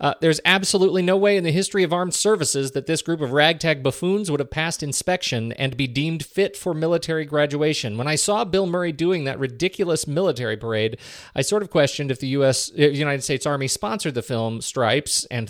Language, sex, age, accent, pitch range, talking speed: English, male, 40-59, American, 115-160 Hz, 210 wpm